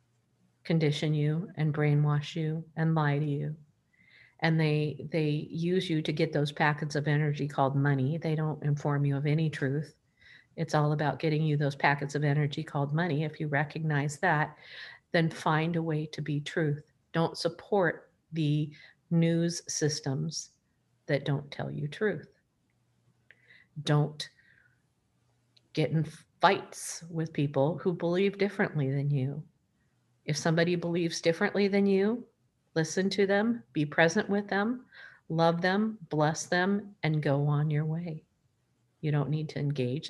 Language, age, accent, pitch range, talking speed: English, 50-69, American, 145-170 Hz, 150 wpm